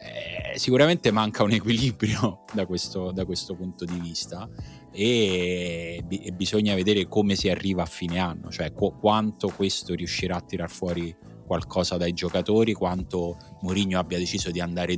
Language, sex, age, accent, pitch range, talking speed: Italian, male, 20-39, native, 85-100 Hz, 150 wpm